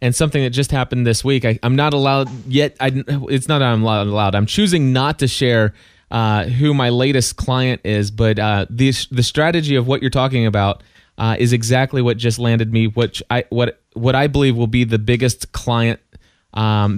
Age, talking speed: 20-39, 205 wpm